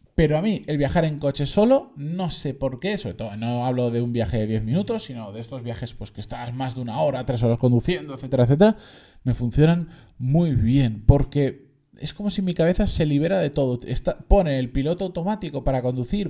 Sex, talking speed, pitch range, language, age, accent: male, 215 wpm, 125-170 Hz, Spanish, 20-39, Spanish